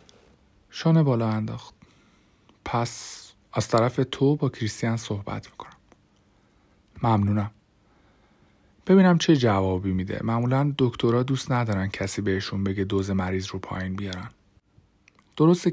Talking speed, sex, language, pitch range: 110 wpm, male, Persian, 100-135 Hz